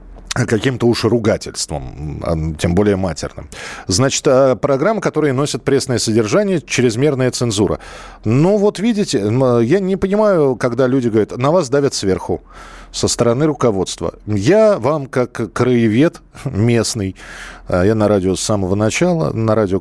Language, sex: Russian, male